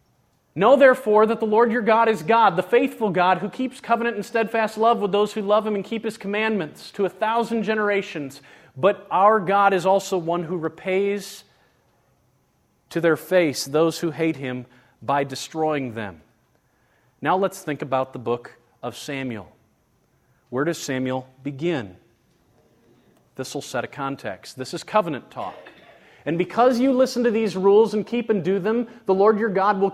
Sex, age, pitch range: male, 40-59, 160-220 Hz